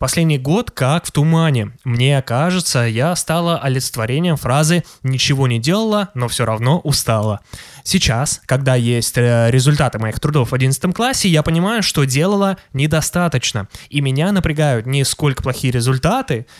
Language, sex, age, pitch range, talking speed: Russian, male, 20-39, 125-165 Hz, 140 wpm